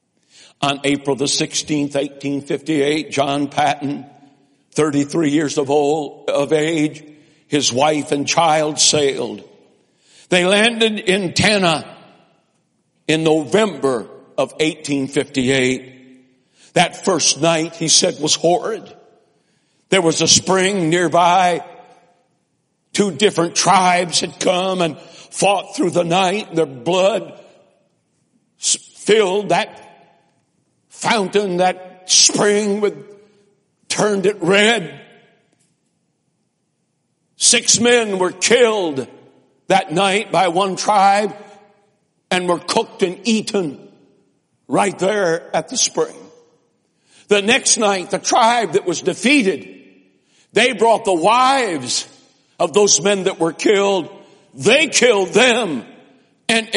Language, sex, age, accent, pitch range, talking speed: English, male, 60-79, American, 155-205 Hz, 105 wpm